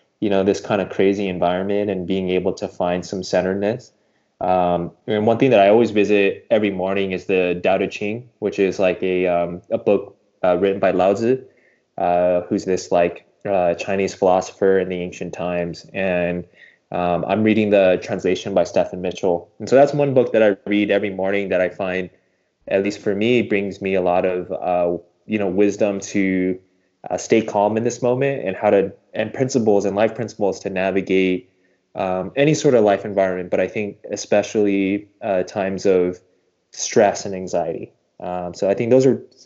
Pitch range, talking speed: 90-110 Hz, 190 wpm